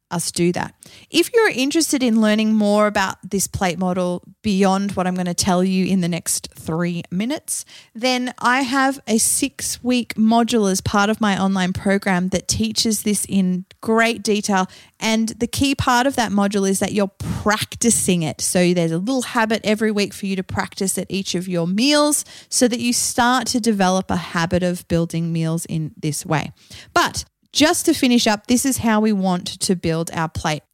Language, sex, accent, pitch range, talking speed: English, female, Australian, 185-230 Hz, 195 wpm